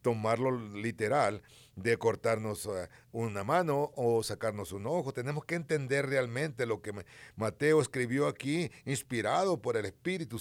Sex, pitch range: male, 115-155 Hz